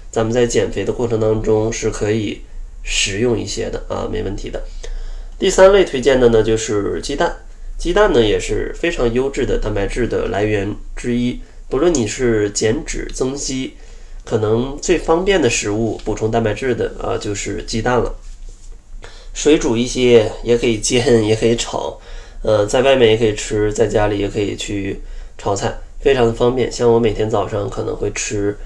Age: 20-39